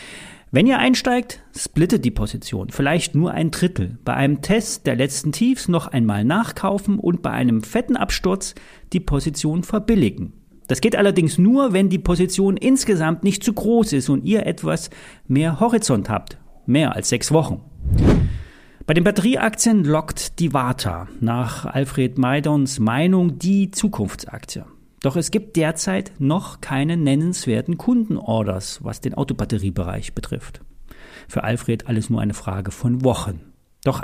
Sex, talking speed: male, 145 wpm